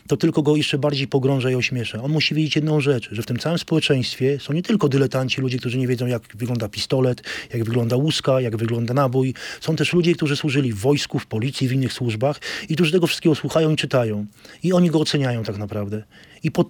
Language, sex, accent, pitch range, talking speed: Polish, male, native, 125-155 Hz, 225 wpm